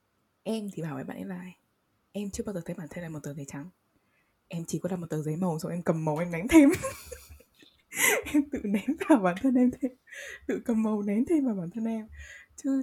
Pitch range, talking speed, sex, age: 170-235 Hz, 250 wpm, female, 20-39